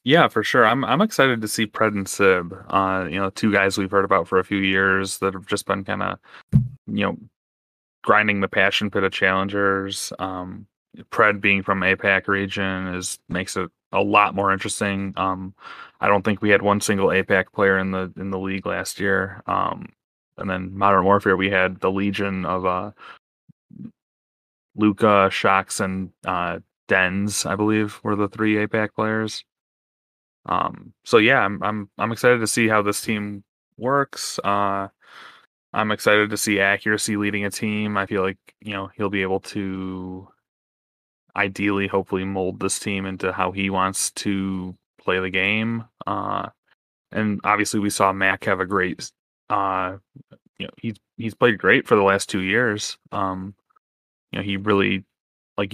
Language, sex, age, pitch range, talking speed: English, male, 20-39, 95-105 Hz, 170 wpm